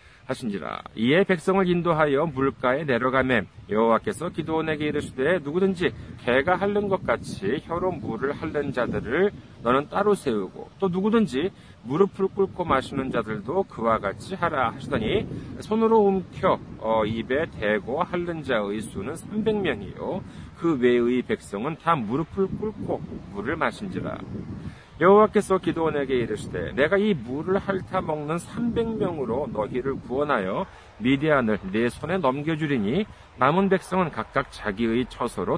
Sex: male